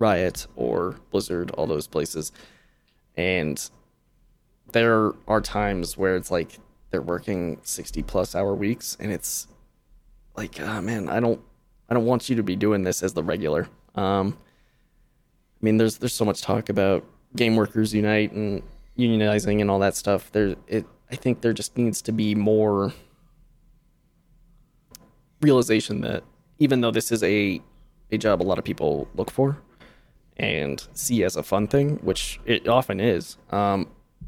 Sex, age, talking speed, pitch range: male, 20-39, 160 wpm, 100-120 Hz